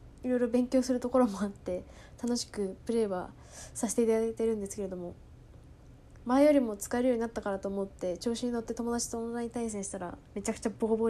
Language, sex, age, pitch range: Japanese, female, 10-29, 200-250 Hz